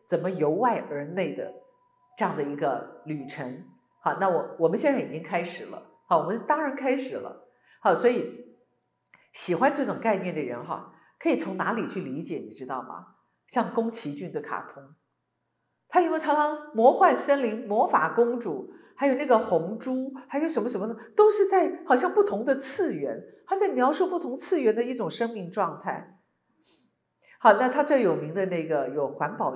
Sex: female